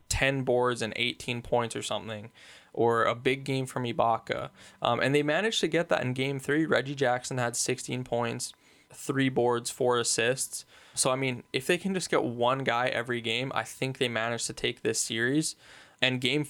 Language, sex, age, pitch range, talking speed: English, male, 10-29, 115-135 Hz, 195 wpm